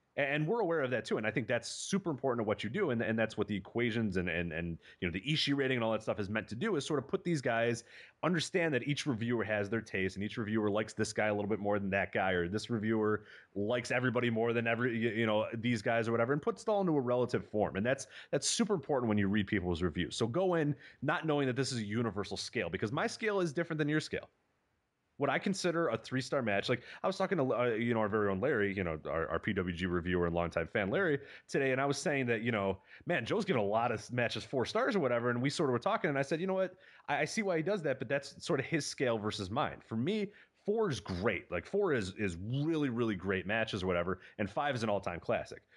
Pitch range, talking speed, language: 105-150 Hz, 275 wpm, English